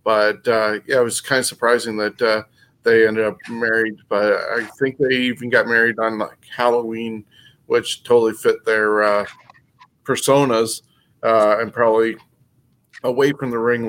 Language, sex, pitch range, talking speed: English, male, 115-130 Hz, 145 wpm